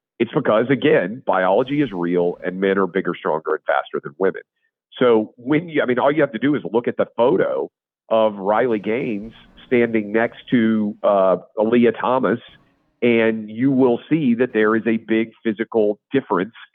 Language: English